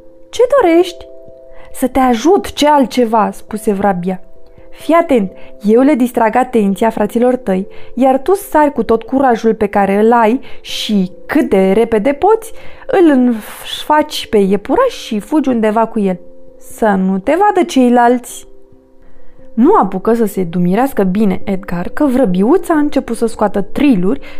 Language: Romanian